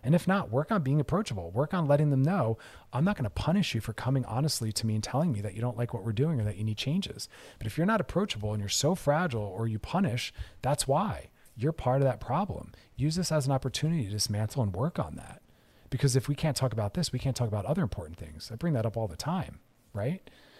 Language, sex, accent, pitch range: English, male, American, 115-155 Hz